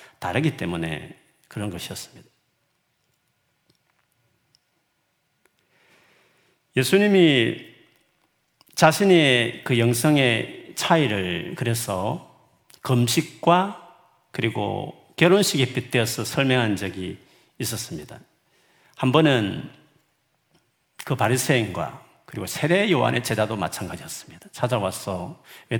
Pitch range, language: 105-155 Hz, Korean